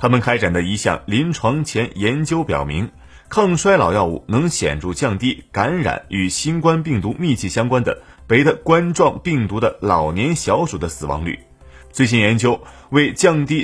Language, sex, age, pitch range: Chinese, male, 30-49, 90-140 Hz